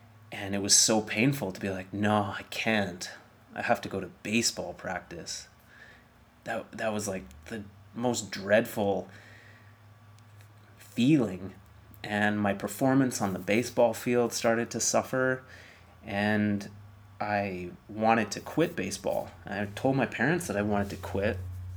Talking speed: 145 wpm